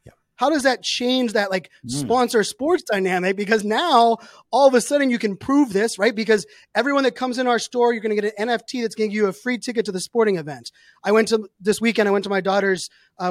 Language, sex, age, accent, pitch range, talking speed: English, male, 20-39, American, 185-230 Hz, 255 wpm